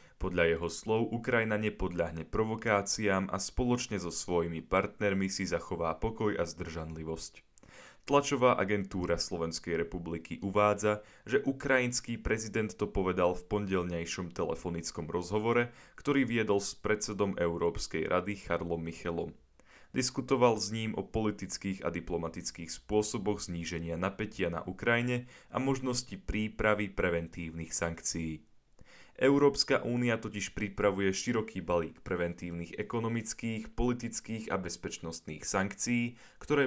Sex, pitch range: male, 85-110 Hz